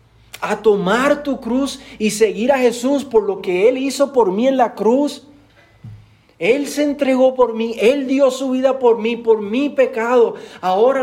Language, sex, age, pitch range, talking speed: Spanish, male, 40-59, 165-245 Hz, 180 wpm